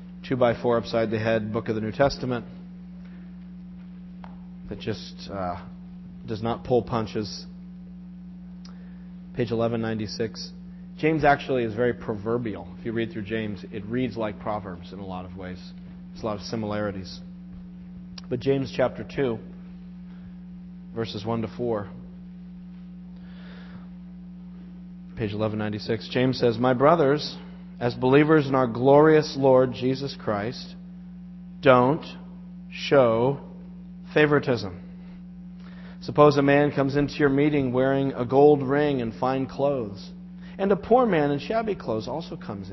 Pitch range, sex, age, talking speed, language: 120-180 Hz, male, 40-59, 130 wpm, English